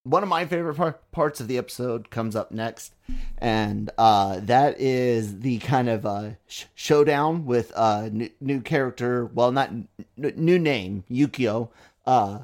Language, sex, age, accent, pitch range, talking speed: English, male, 30-49, American, 110-130 Hz, 175 wpm